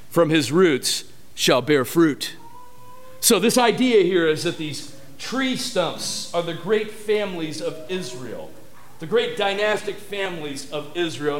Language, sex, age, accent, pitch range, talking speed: English, male, 50-69, American, 155-225 Hz, 140 wpm